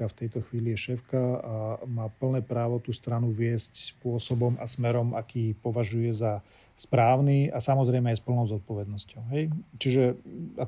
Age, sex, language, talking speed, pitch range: 40-59, male, Slovak, 155 wpm, 115-130 Hz